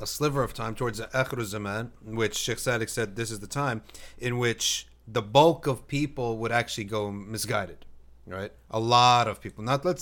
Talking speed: 190 wpm